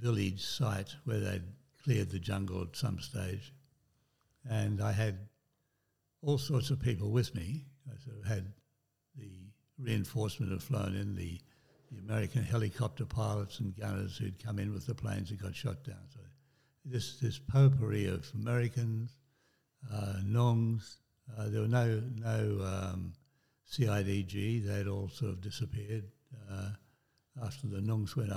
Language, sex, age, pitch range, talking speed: English, male, 60-79, 105-130 Hz, 150 wpm